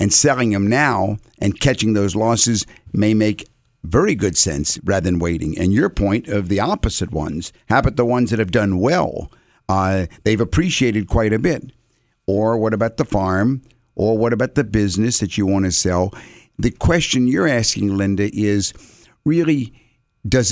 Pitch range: 100-120 Hz